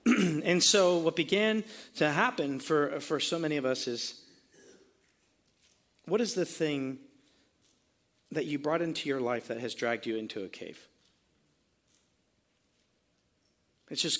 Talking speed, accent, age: 135 wpm, American, 40-59